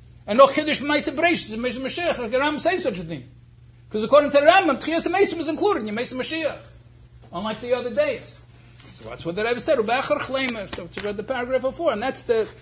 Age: 60-79